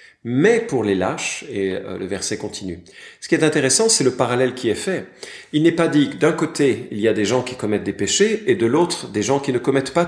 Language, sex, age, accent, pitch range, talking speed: French, male, 50-69, French, 105-135 Hz, 255 wpm